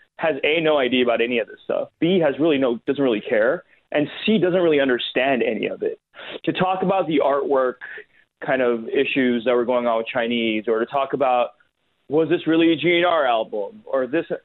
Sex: male